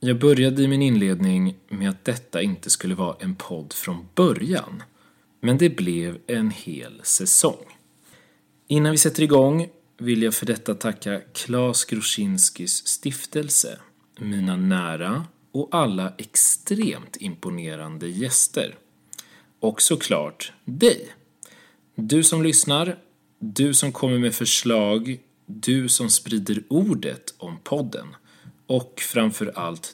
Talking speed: 120 wpm